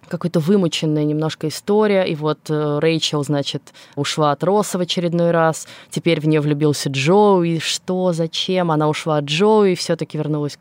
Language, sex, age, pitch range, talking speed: Russian, female, 20-39, 150-180 Hz, 170 wpm